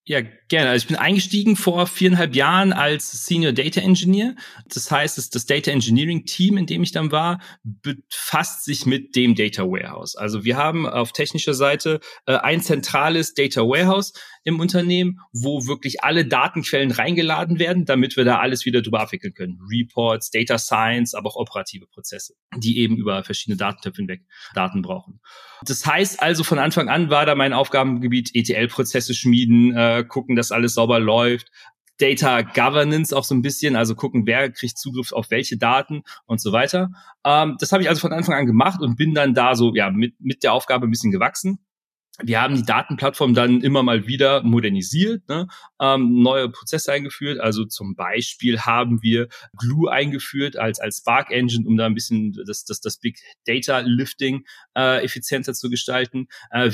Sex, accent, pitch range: male, German, 120-160 Hz